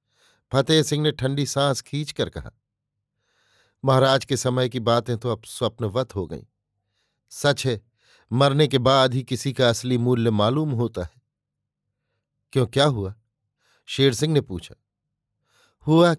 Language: Hindi